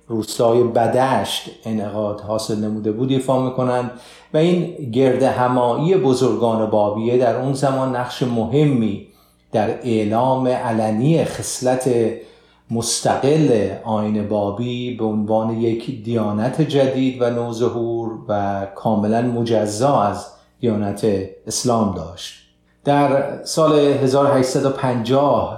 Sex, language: male, Persian